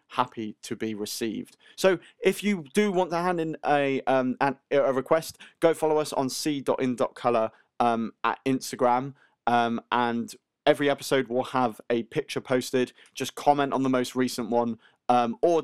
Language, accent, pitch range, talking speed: English, British, 120-150 Hz, 160 wpm